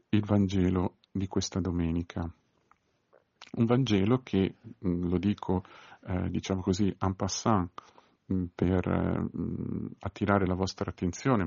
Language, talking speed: Italian, 115 wpm